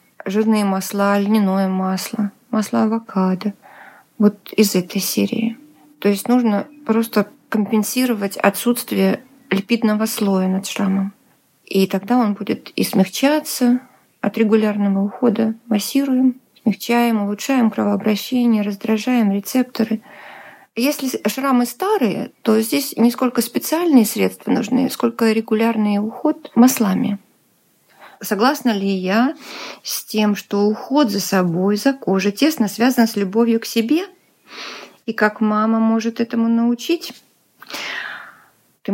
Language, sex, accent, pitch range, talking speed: Russian, female, native, 200-245 Hz, 110 wpm